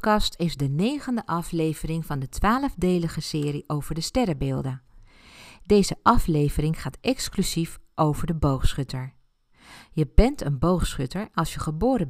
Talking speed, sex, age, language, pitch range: 125 wpm, female, 50-69, Dutch, 140-200 Hz